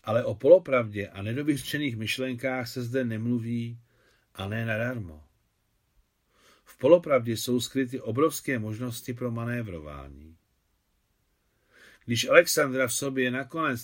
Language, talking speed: Czech, 115 wpm